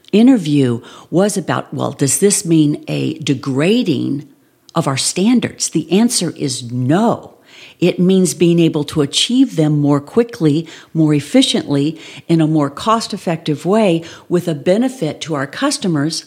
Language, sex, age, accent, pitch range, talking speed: English, female, 50-69, American, 155-205 Hz, 140 wpm